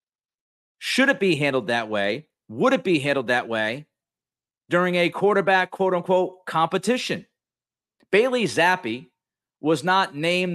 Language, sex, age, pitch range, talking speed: English, male, 40-59, 145-185 Hz, 130 wpm